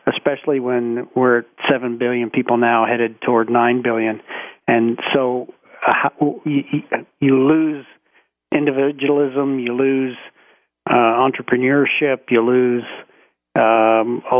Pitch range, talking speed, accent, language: 120-145 Hz, 115 wpm, American, English